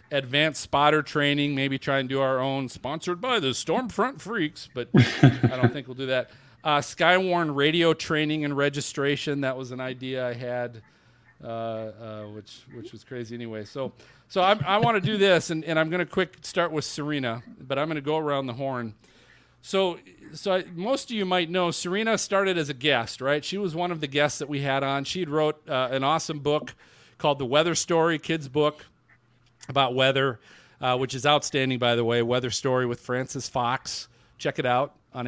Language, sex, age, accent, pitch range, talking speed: English, male, 40-59, American, 130-160 Hz, 200 wpm